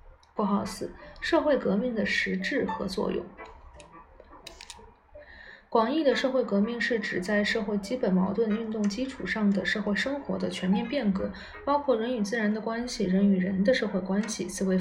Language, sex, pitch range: Chinese, female, 195-255 Hz